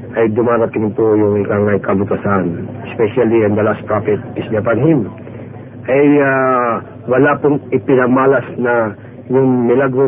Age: 50-69